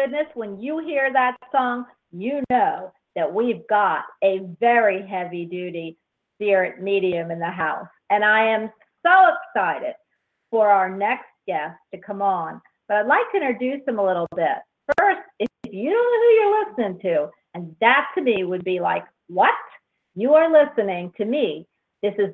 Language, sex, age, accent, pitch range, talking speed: English, female, 50-69, American, 190-270 Hz, 175 wpm